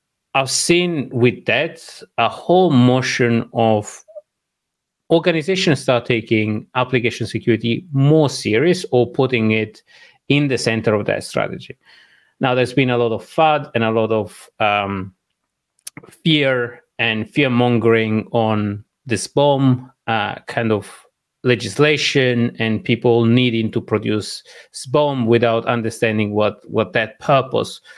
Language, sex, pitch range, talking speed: English, male, 110-130 Hz, 125 wpm